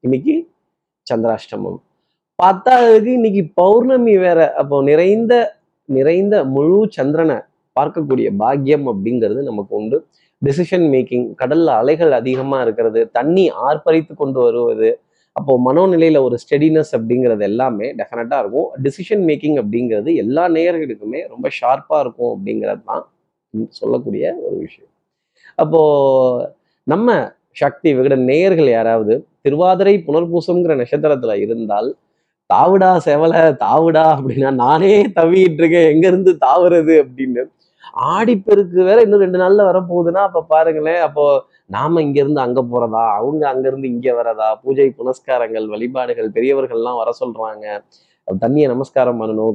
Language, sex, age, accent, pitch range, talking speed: Tamil, male, 30-49, native, 130-190 Hz, 115 wpm